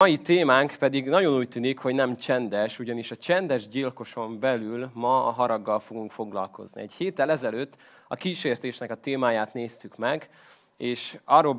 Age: 20-39